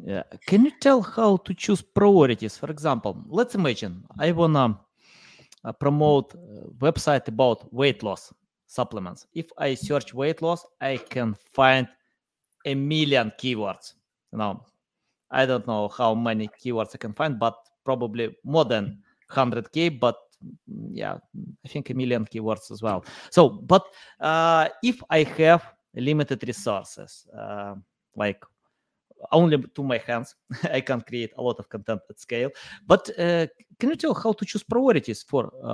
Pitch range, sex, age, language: 120-170 Hz, male, 20-39, English